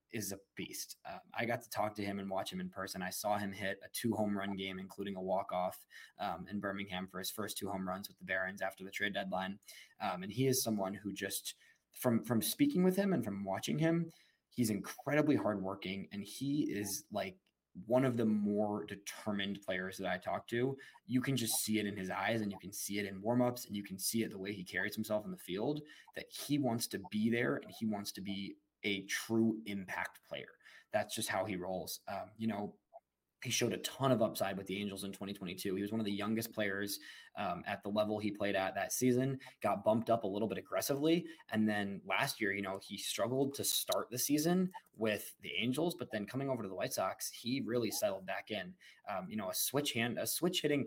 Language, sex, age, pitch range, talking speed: English, male, 20-39, 100-125 Hz, 235 wpm